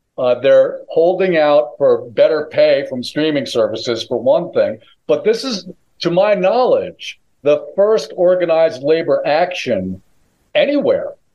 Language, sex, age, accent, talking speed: English, male, 50-69, American, 130 wpm